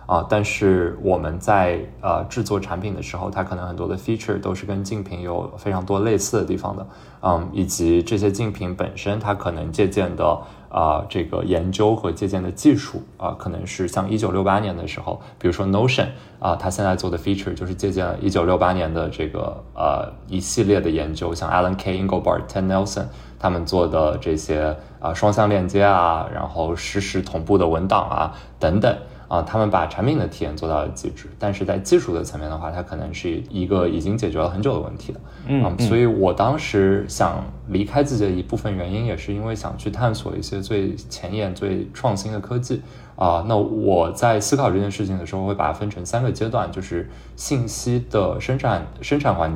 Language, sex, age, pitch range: Chinese, male, 20-39, 85-105 Hz